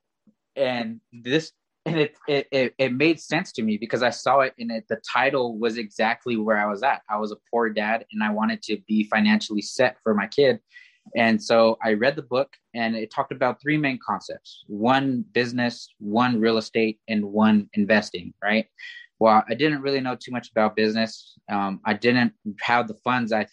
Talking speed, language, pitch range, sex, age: 195 wpm, English, 105-125 Hz, male, 20-39